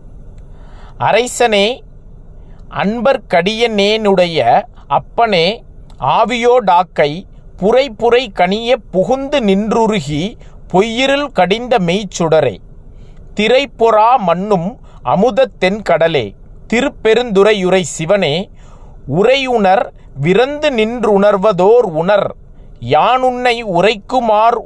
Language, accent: Tamil, native